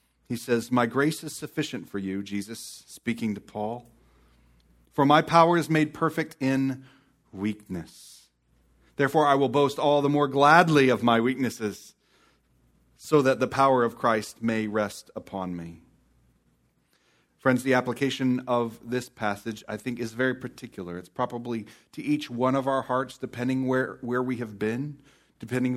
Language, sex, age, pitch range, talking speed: English, male, 40-59, 95-140 Hz, 155 wpm